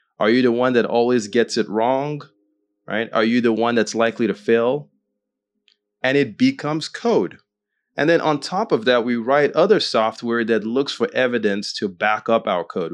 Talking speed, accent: 190 wpm, American